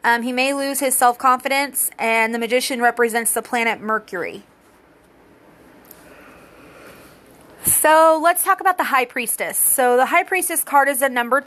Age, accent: 30-49, American